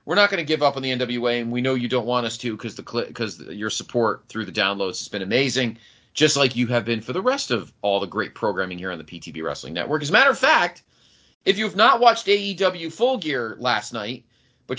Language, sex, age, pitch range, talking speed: English, male, 30-49, 105-165 Hz, 250 wpm